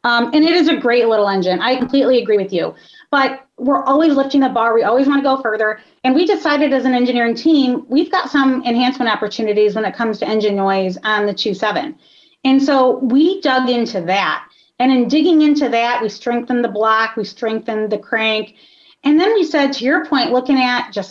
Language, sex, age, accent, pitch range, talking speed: English, female, 30-49, American, 220-275 Hz, 215 wpm